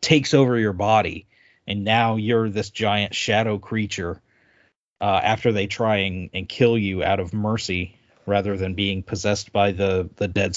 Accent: American